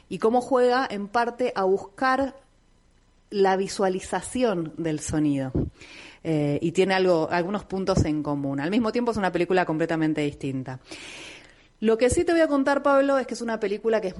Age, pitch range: 30-49, 160-205 Hz